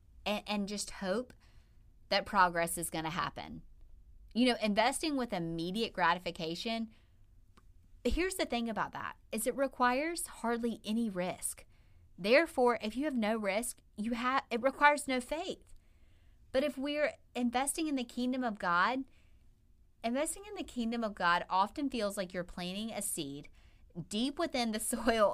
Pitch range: 175-245 Hz